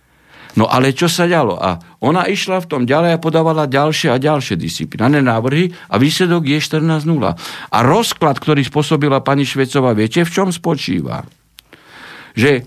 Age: 60-79